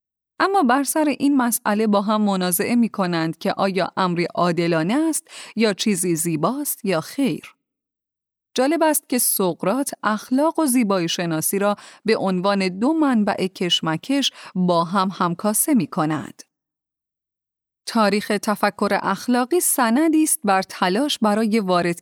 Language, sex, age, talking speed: Persian, female, 30-49, 130 wpm